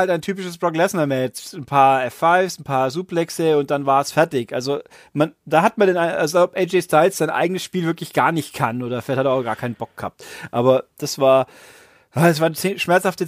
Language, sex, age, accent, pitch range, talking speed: German, male, 30-49, German, 145-185 Hz, 215 wpm